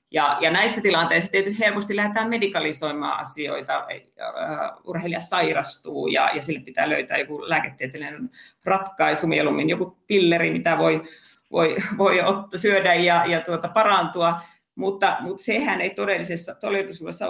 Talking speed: 130 wpm